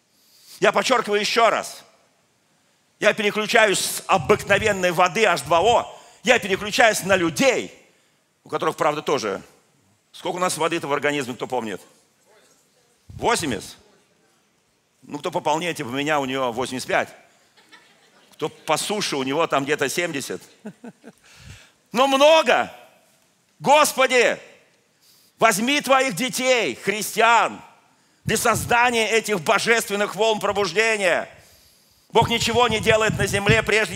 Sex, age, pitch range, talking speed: male, 50-69, 175-225 Hz, 115 wpm